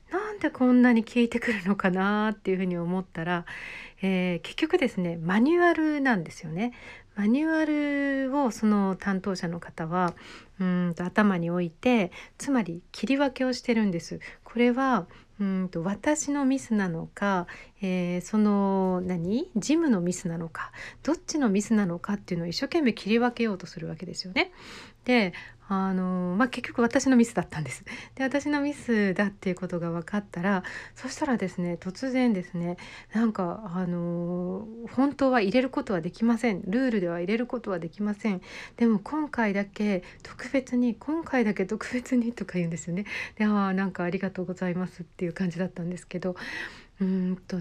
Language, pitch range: Japanese, 180-245 Hz